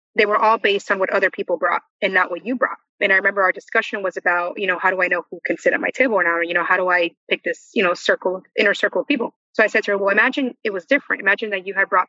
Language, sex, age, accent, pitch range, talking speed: English, female, 20-39, American, 185-215 Hz, 325 wpm